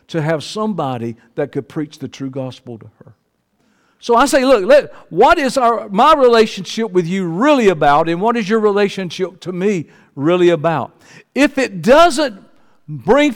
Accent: American